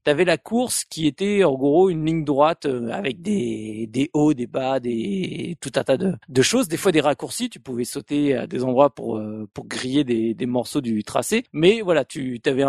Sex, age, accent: male, 40-59, French